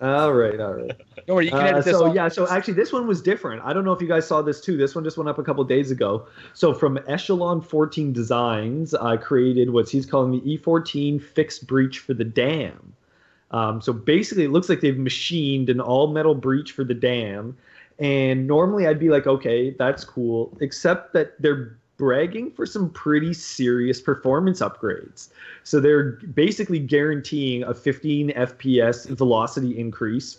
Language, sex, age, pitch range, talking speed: English, male, 20-39, 120-150 Hz, 190 wpm